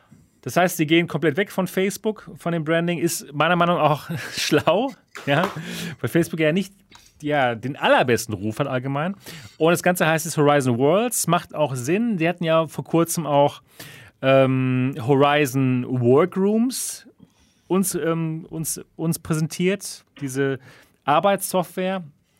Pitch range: 130-170 Hz